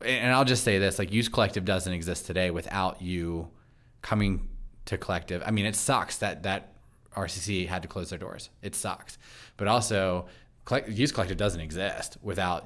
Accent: American